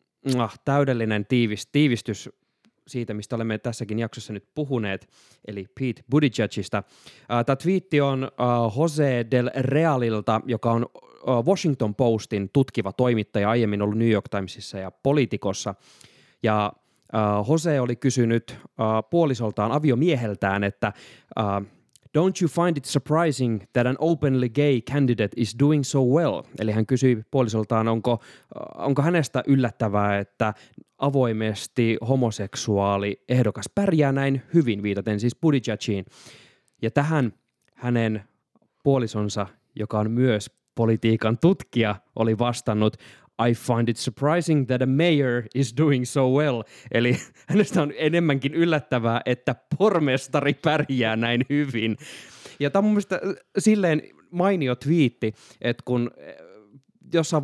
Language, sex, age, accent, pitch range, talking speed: Finnish, male, 20-39, native, 110-145 Hz, 120 wpm